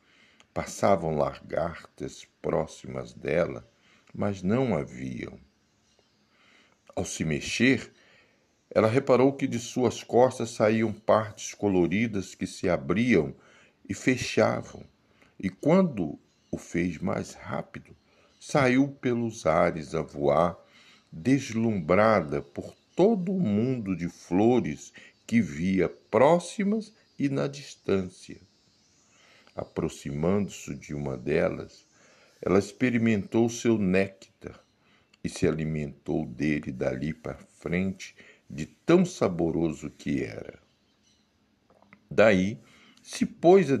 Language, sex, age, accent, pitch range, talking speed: Portuguese, male, 60-79, Brazilian, 80-125 Hz, 100 wpm